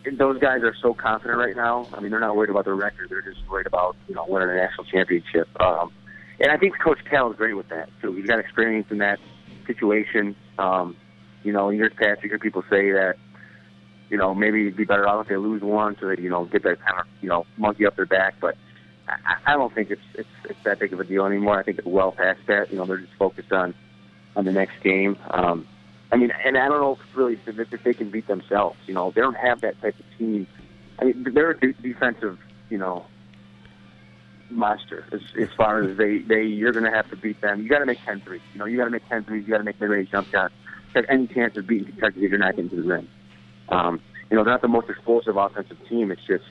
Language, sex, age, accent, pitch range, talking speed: English, male, 30-49, American, 90-115 Hz, 250 wpm